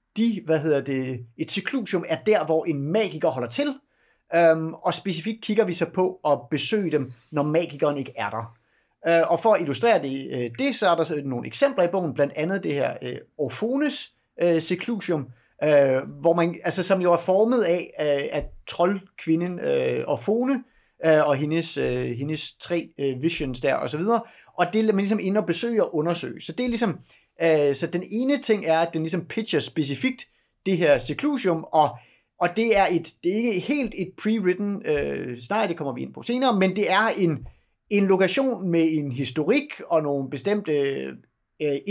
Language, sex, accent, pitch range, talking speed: Danish, male, native, 145-205 Hz, 195 wpm